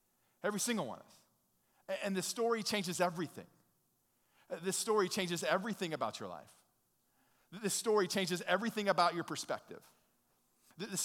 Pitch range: 160-185 Hz